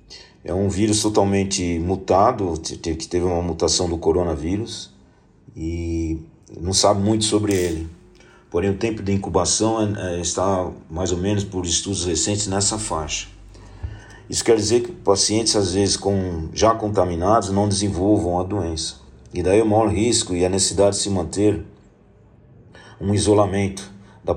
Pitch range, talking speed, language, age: 90-105 Hz, 150 wpm, Portuguese, 50-69